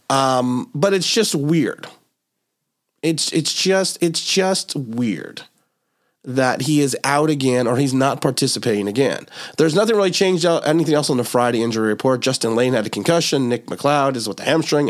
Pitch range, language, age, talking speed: 130-175 Hz, English, 30-49, 175 wpm